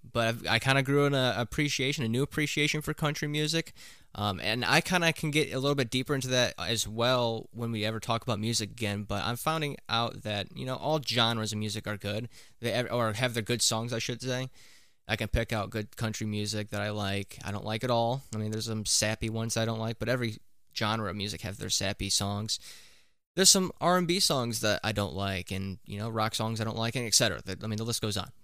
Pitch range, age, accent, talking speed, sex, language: 105-130 Hz, 20-39, American, 245 wpm, male, English